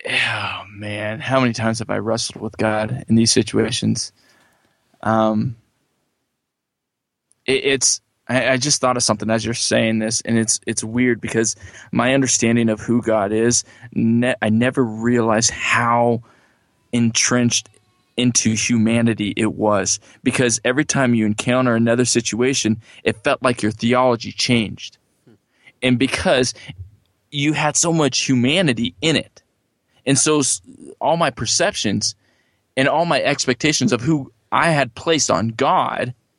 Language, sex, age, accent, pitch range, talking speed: English, male, 20-39, American, 110-135 Hz, 140 wpm